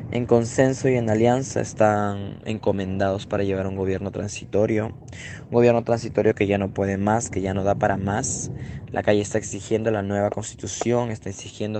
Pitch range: 100-115 Hz